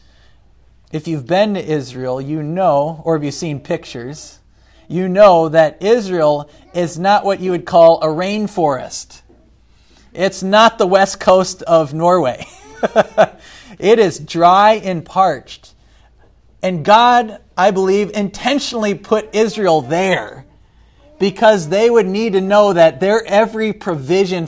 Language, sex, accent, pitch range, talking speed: English, male, American, 135-190 Hz, 130 wpm